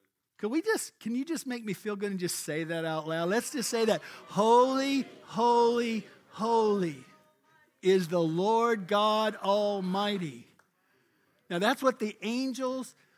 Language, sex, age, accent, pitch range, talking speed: English, male, 50-69, American, 180-255 Hz, 135 wpm